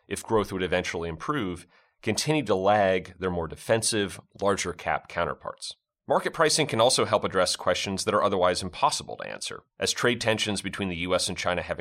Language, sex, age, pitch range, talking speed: English, male, 30-49, 90-105 Hz, 180 wpm